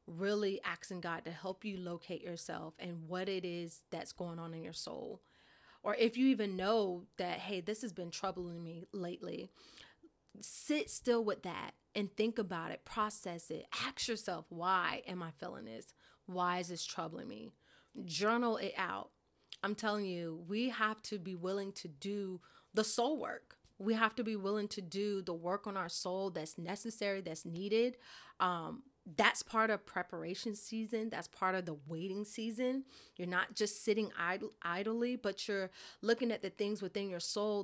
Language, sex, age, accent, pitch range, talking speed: English, female, 30-49, American, 180-220 Hz, 175 wpm